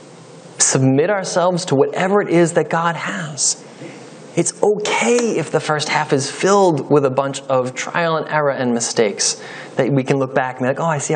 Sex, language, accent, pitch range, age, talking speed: male, English, American, 150-210 Hz, 20-39, 200 wpm